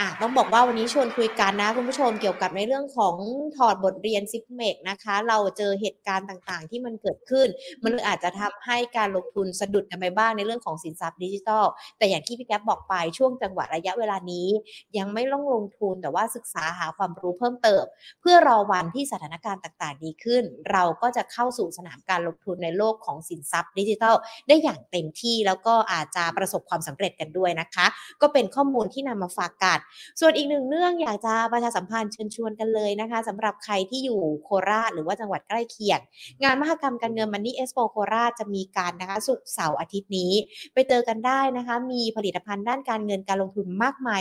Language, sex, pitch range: Thai, female, 185-240 Hz